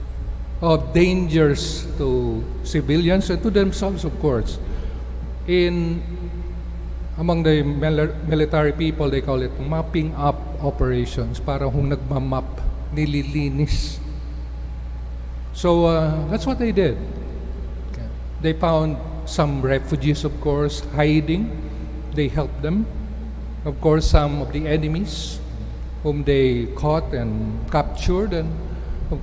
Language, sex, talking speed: English, male, 100 wpm